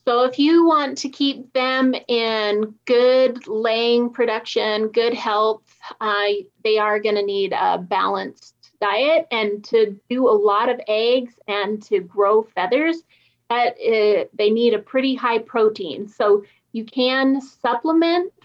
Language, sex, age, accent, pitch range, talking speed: English, female, 30-49, American, 210-255 Hz, 145 wpm